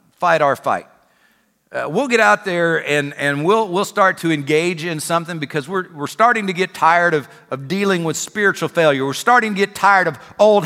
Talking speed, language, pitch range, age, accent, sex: 210 wpm, English, 190-260 Hz, 50-69, American, male